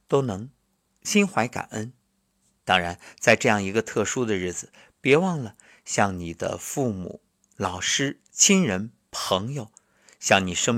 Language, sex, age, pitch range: Chinese, male, 50-69, 95-125 Hz